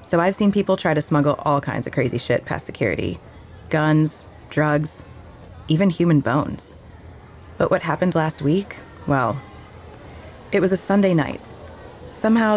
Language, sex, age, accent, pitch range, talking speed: English, female, 20-39, American, 135-175 Hz, 150 wpm